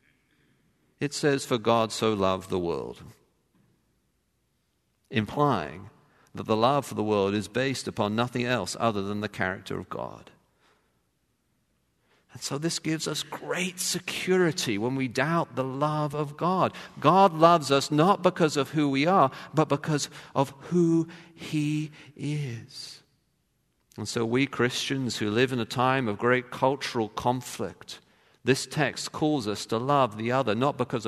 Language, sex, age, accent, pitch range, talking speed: English, male, 50-69, British, 110-145 Hz, 150 wpm